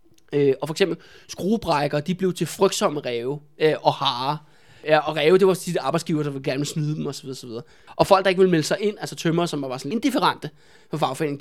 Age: 20-39